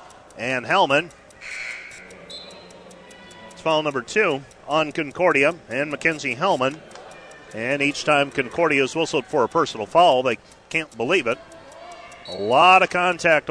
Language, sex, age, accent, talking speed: English, male, 40-59, American, 130 wpm